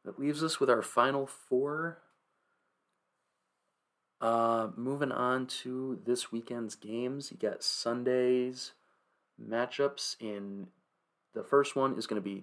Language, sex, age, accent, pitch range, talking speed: English, male, 30-49, American, 105-125 Hz, 125 wpm